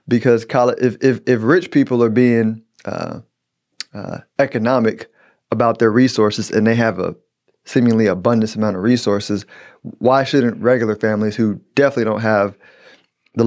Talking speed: 145 wpm